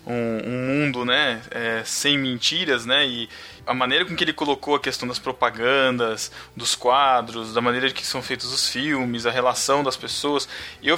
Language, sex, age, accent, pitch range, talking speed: Portuguese, male, 20-39, Brazilian, 125-155 Hz, 180 wpm